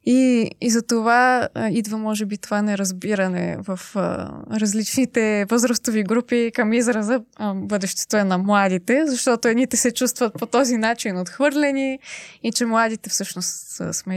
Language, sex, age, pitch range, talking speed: Bulgarian, female, 20-39, 195-240 Hz, 150 wpm